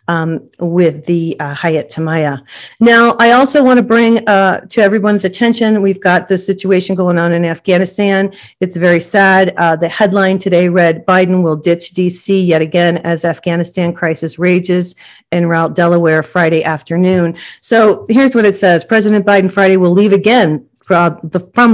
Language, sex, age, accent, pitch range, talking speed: English, female, 40-59, American, 165-200 Hz, 160 wpm